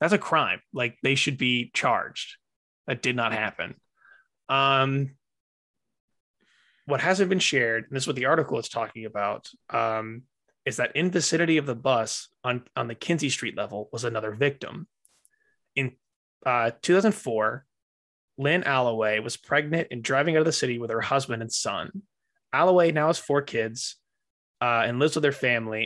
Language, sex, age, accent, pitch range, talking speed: English, male, 20-39, American, 115-150 Hz, 170 wpm